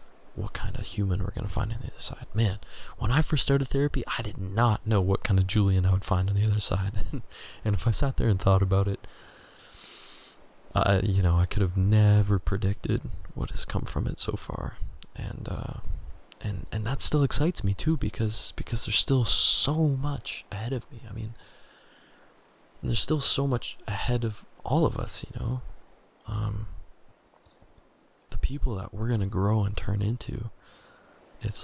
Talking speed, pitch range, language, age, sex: 185 wpm, 100-115 Hz, English, 20-39, male